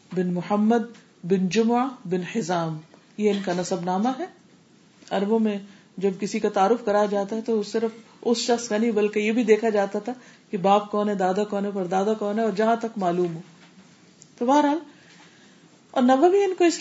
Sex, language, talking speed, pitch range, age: female, Urdu, 200 wpm, 190-240 Hz, 40-59